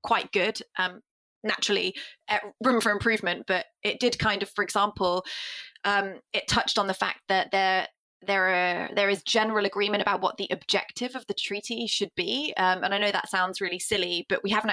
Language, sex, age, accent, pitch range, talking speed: English, female, 20-39, British, 180-210 Hz, 200 wpm